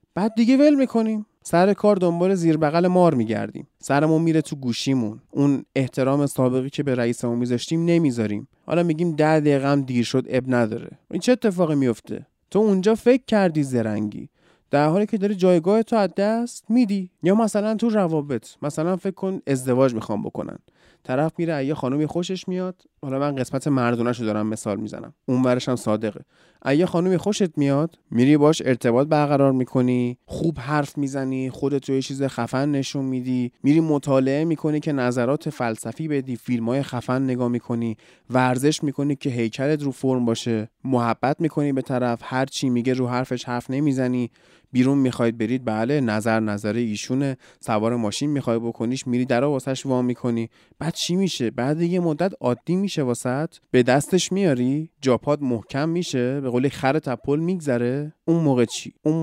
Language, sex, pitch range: Persian, male, 125-160 Hz